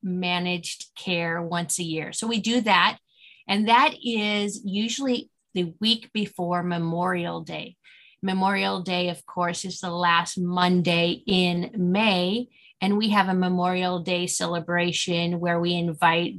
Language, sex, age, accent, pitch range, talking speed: English, female, 30-49, American, 175-215 Hz, 140 wpm